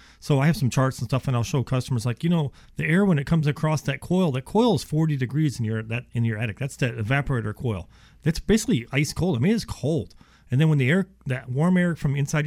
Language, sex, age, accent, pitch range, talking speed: English, male, 40-59, American, 125-165 Hz, 265 wpm